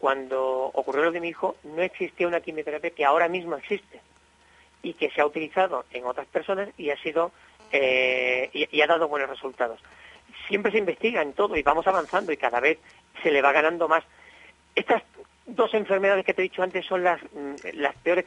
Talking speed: 185 wpm